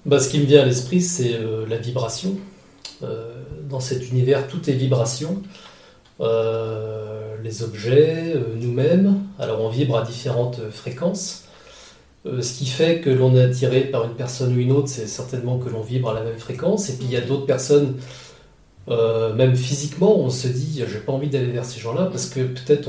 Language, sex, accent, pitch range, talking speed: French, male, French, 120-145 Hz, 200 wpm